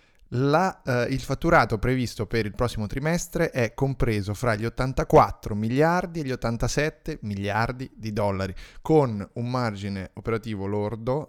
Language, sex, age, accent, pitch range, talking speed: Italian, male, 20-39, native, 105-125 Hz, 135 wpm